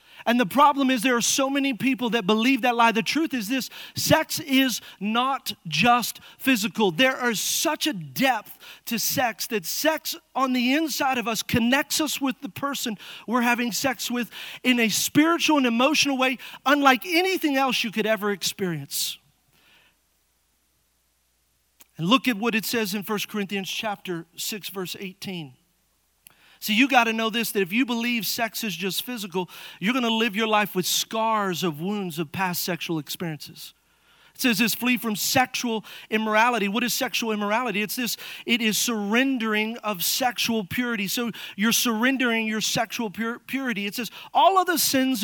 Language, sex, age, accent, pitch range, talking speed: English, male, 40-59, American, 200-255 Hz, 170 wpm